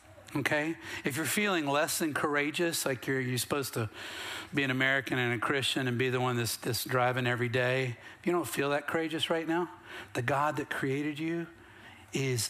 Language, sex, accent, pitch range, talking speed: English, male, American, 120-170 Hz, 195 wpm